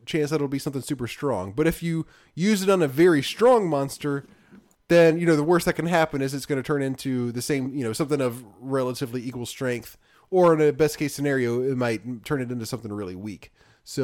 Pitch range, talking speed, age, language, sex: 125-170 Hz, 230 wpm, 20-39, English, male